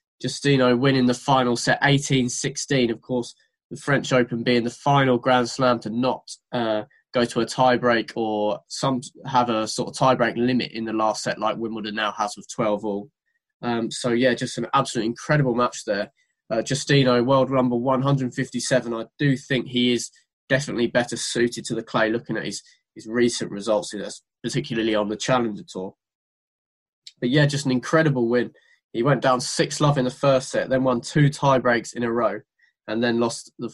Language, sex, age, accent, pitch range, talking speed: English, male, 20-39, British, 115-130 Hz, 185 wpm